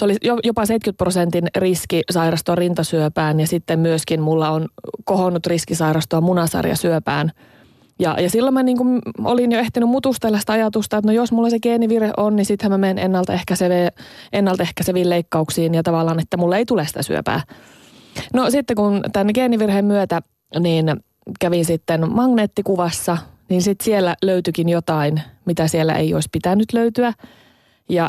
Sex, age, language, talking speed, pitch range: female, 30-49, Finnish, 155 wpm, 165-220 Hz